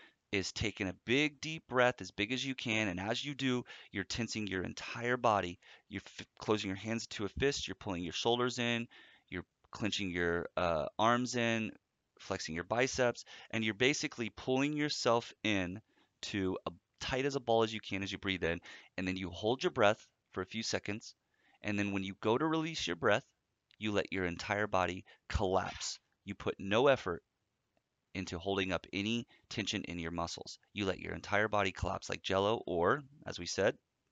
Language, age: English, 30-49